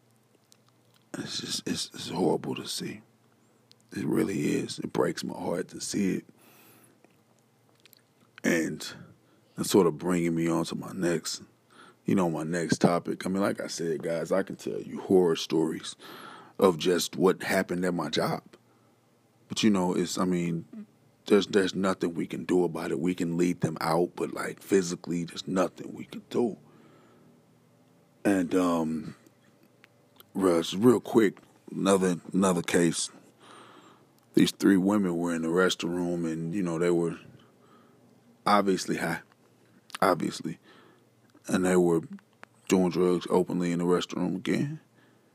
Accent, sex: American, male